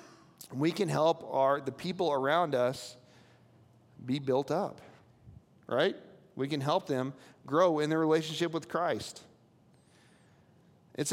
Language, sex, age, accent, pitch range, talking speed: English, male, 40-59, American, 150-205 Hz, 125 wpm